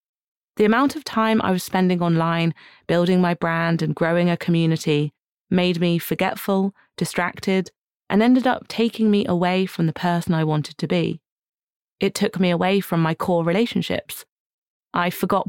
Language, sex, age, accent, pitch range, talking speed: English, female, 30-49, British, 165-200 Hz, 165 wpm